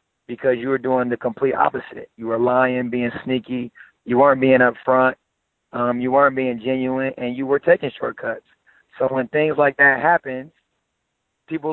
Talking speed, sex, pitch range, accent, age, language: 175 wpm, male, 125-145 Hz, American, 30-49, English